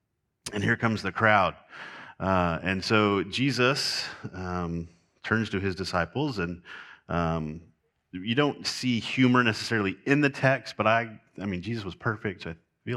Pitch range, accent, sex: 85-105 Hz, American, male